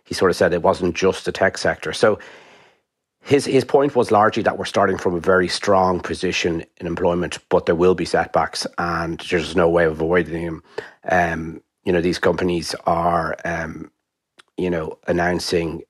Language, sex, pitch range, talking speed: English, male, 85-90 Hz, 180 wpm